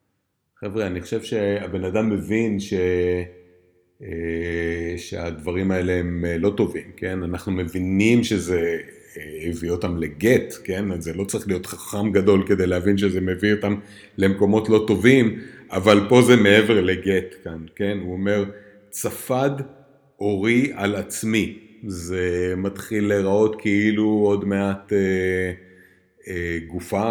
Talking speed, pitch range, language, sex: 125 wpm, 90-110 Hz, Hebrew, male